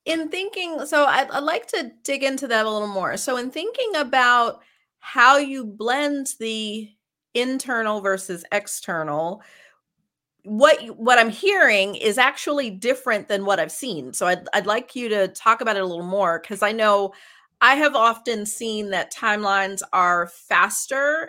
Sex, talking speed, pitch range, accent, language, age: female, 165 wpm, 185-245 Hz, American, English, 30-49